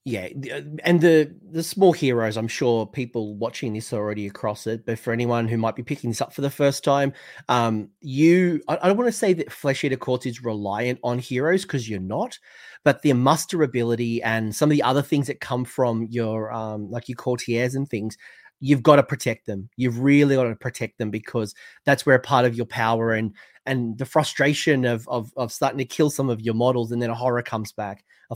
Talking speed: 220 wpm